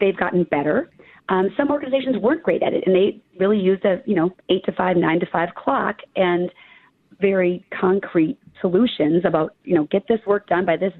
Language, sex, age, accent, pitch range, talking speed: English, female, 30-49, American, 175-225 Hz, 200 wpm